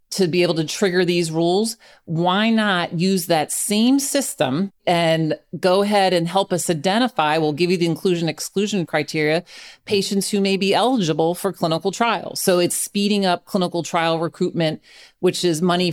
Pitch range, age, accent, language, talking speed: 155-185 Hz, 40-59, American, English, 170 wpm